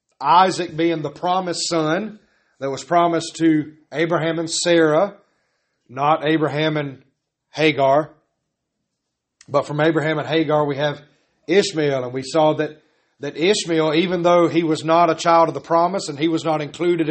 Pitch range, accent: 155-185 Hz, American